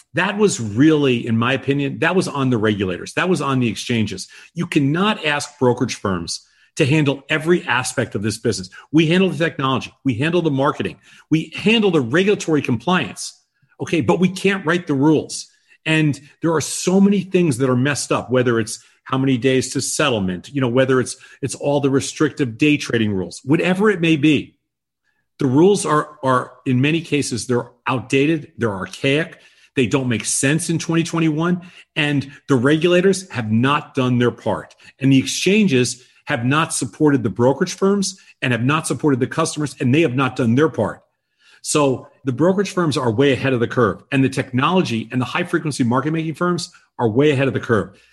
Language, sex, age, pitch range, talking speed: English, male, 40-59, 125-160 Hz, 190 wpm